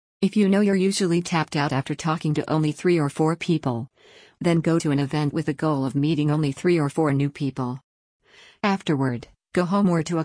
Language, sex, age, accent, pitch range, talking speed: English, female, 50-69, American, 140-170 Hz, 215 wpm